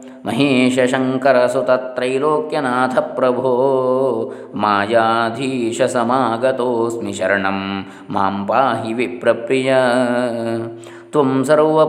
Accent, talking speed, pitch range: native, 60 wpm, 115-140 Hz